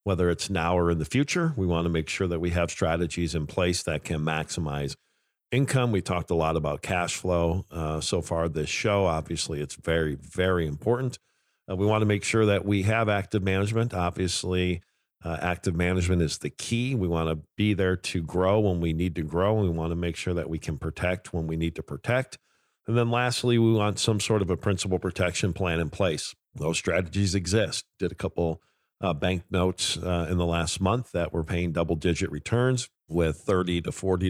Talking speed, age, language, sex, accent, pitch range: 210 wpm, 50-69, English, male, American, 80-100 Hz